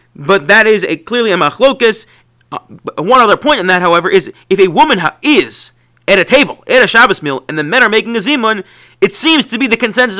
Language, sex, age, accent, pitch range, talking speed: English, male, 30-49, American, 140-205 Hz, 235 wpm